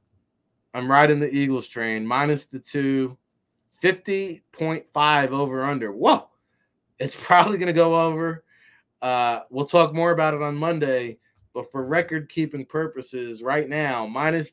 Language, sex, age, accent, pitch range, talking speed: English, male, 20-39, American, 135-160 Hz, 135 wpm